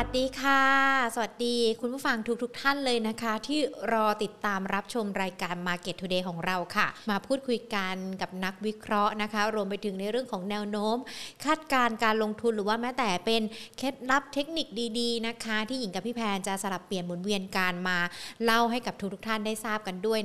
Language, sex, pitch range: Thai, female, 200-250 Hz